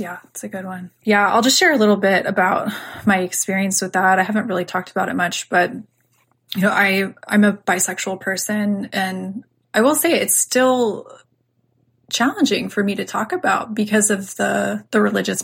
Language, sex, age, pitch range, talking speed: English, female, 20-39, 190-220 Hz, 190 wpm